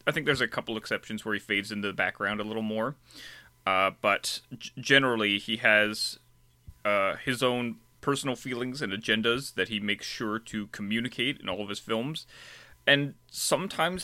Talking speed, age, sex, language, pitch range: 170 wpm, 30-49, male, English, 95-125 Hz